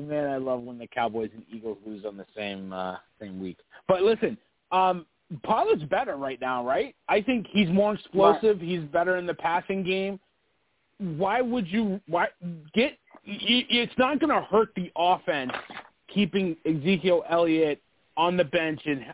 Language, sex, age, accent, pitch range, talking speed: English, male, 30-49, American, 140-185 Hz, 165 wpm